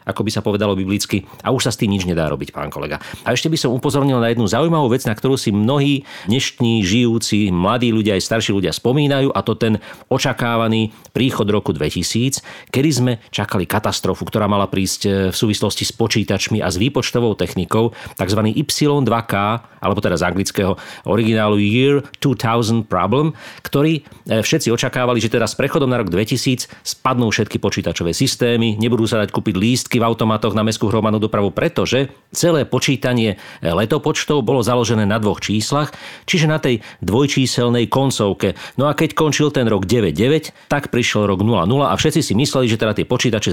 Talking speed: 175 wpm